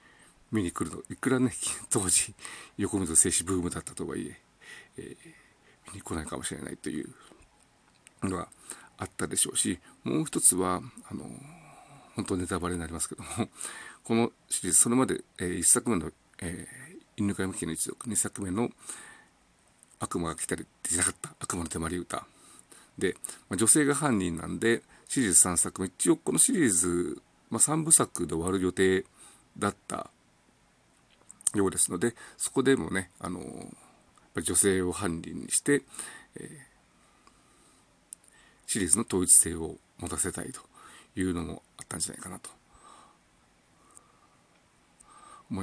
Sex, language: male, Japanese